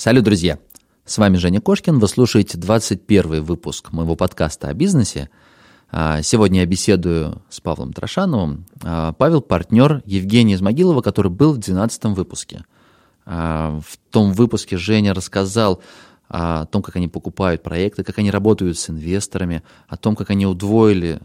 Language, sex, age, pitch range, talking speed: Russian, male, 20-39, 90-115 Hz, 140 wpm